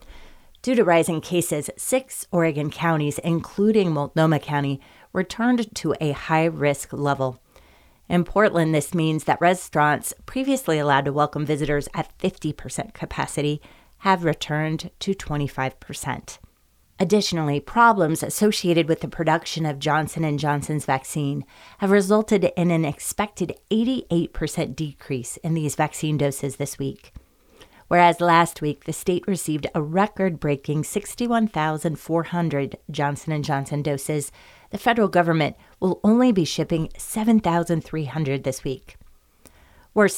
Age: 30-49